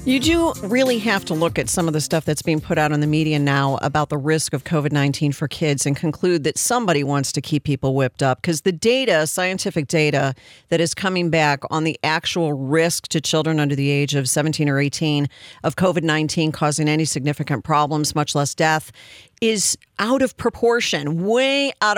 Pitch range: 145-175 Hz